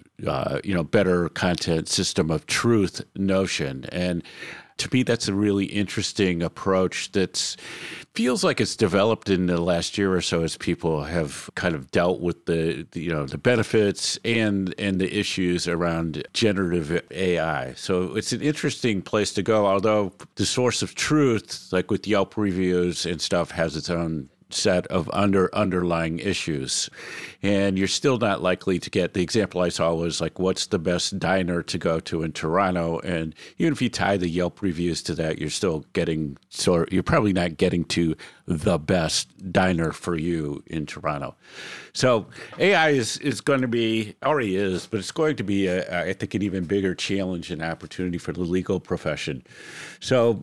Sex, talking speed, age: male, 180 wpm, 50-69